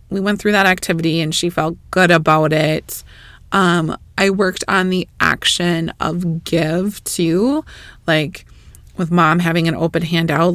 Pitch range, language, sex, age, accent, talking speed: 160-195 Hz, English, female, 20-39, American, 155 wpm